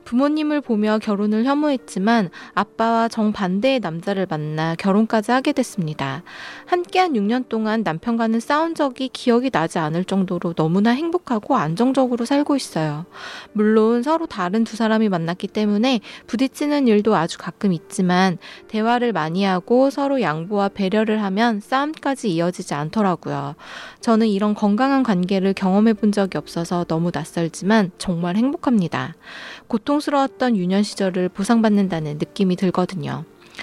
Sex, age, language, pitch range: female, 20-39, Korean, 185-255 Hz